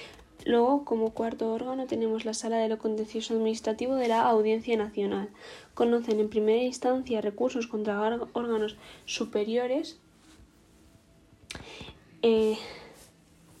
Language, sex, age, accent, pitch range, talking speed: Spanish, female, 10-29, Spanish, 220-250 Hz, 105 wpm